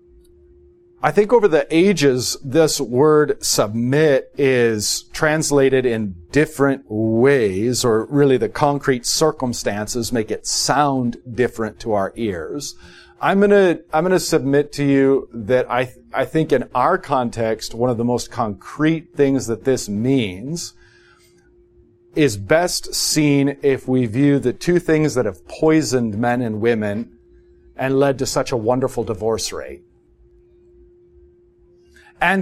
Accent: American